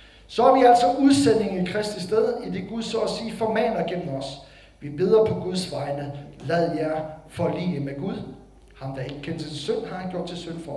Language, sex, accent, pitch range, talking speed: Danish, male, native, 175-245 Hz, 215 wpm